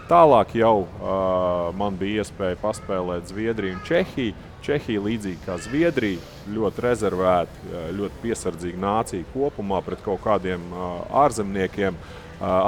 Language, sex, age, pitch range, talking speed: English, male, 30-49, 90-105 Hz, 125 wpm